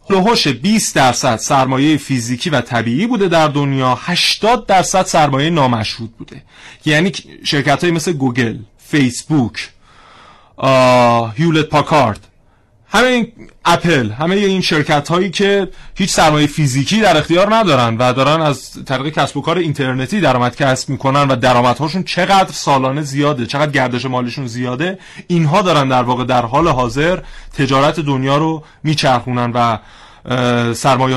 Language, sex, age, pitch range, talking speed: Persian, male, 30-49, 125-165 Hz, 130 wpm